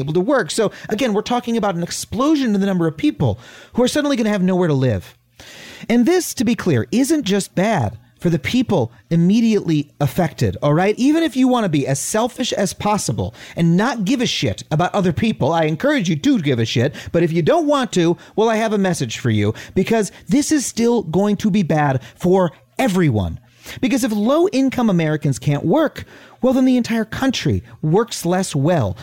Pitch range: 160-245 Hz